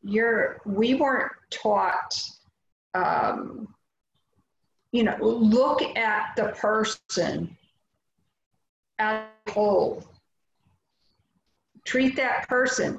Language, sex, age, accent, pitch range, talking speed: English, female, 50-69, American, 210-255 Hz, 80 wpm